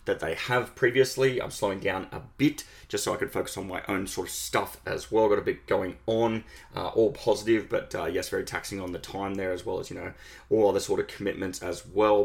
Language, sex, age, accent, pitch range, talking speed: English, male, 20-39, Australian, 100-135 Hz, 250 wpm